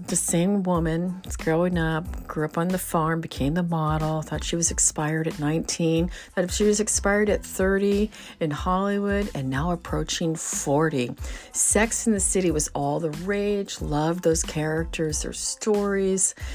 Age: 40-59